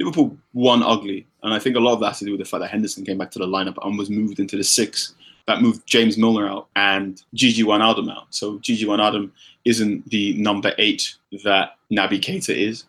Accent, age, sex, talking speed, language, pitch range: British, 20-39, male, 240 wpm, English, 100-120 Hz